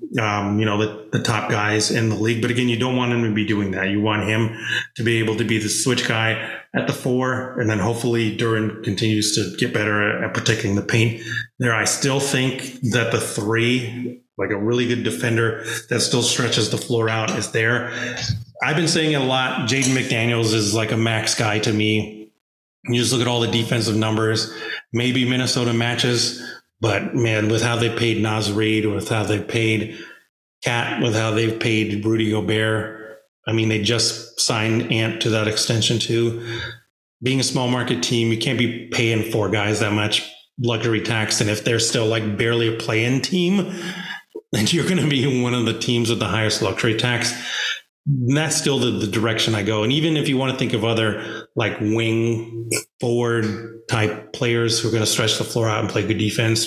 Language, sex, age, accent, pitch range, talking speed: English, male, 30-49, American, 110-120 Hz, 205 wpm